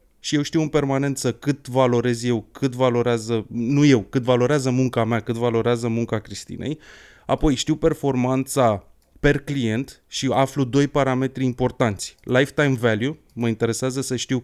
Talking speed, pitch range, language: 150 wpm, 120-150 Hz, Romanian